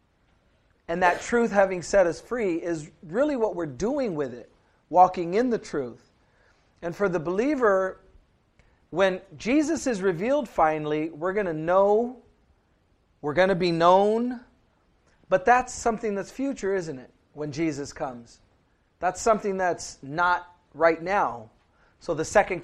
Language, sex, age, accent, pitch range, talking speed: English, male, 40-59, American, 150-200 Hz, 145 wpm